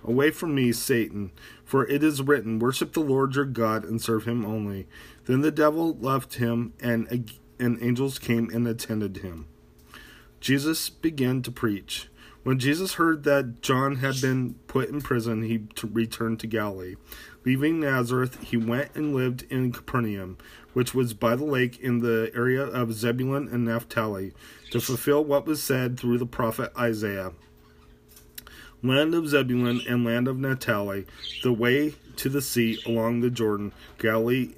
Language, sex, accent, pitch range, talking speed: English, male, American, 110-130 Hz, 160 wpm